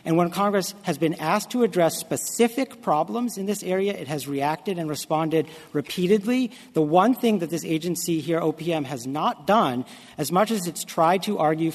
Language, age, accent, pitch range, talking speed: English, 40-59, American, 145-185 Hz, 190 wpm